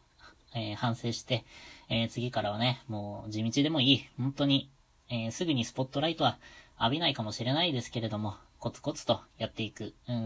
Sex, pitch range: female, 110-135 Hz